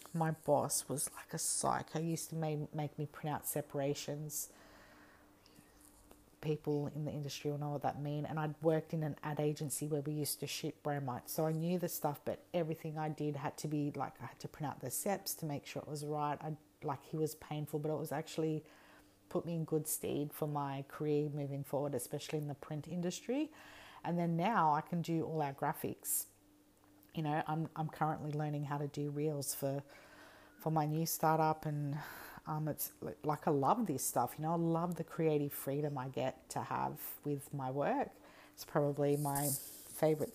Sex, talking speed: female, 200 wpm